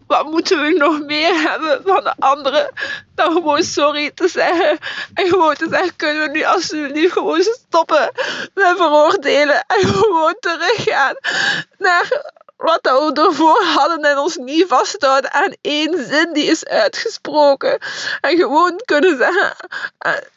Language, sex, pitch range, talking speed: Dutch, female, 265-340 Hz, 140 wpm